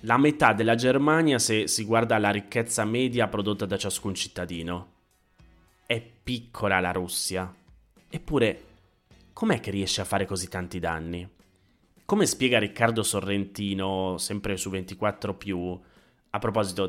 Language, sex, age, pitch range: Italian, male, 20-39, 95-120 Hz